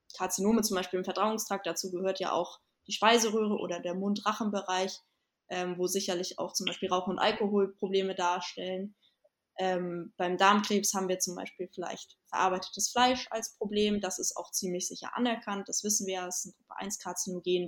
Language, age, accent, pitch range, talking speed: German, 20-39, German, 185-240 Hz, 170 wpm